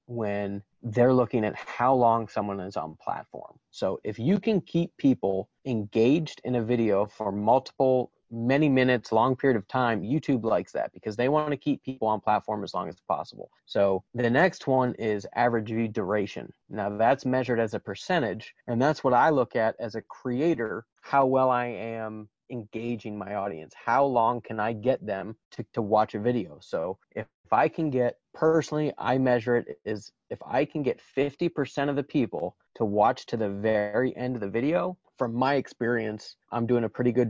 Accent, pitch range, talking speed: American, 110-125 Hz, 195 wpm